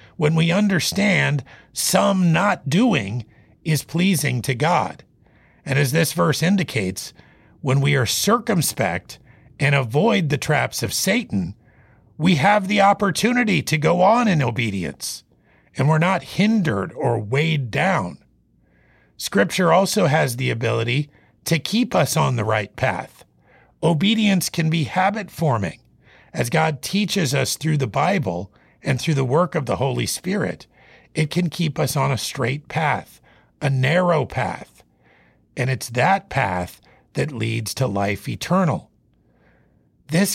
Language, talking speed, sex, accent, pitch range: English, 140 wpm, male, American, 120-170 Hz